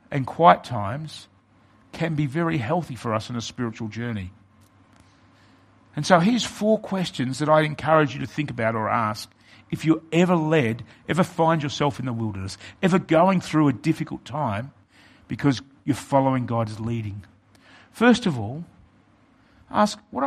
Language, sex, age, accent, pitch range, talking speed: English, male, 50-69, Australian, 105-165 Hz, 160 wpm